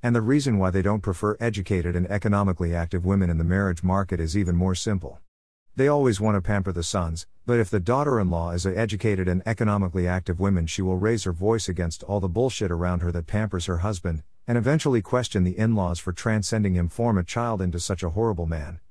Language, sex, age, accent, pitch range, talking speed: English, male, 50-69, American, 85-115 Hz, 220 wpm